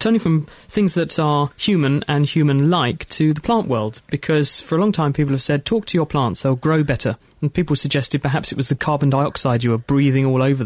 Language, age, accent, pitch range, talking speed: English, 30-49, British, 135-160 Hz, 230 wpm